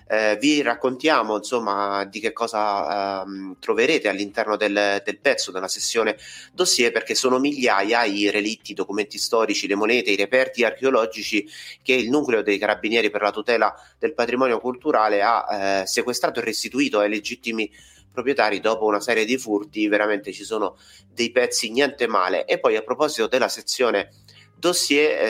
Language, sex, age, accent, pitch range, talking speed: Italian, male, 30-49, native, 105-130 Hz, 160 wpm